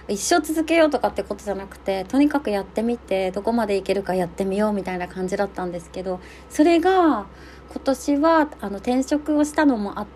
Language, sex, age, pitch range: Japanese, female, 30-49, 190-270 Hz